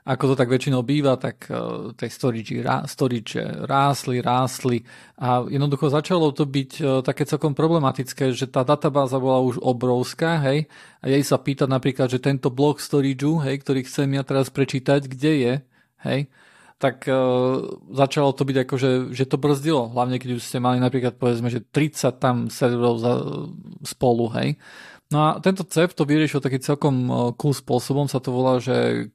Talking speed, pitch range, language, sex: 175 wpm, 125-145 Hz, Slovak, male